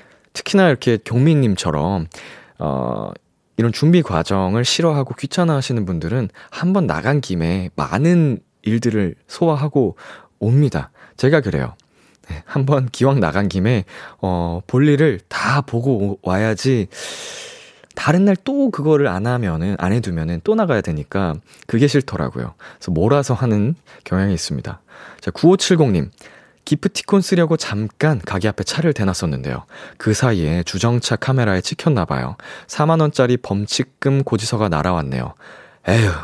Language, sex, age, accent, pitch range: Korean, male, 20-39, native, 95-145 Hz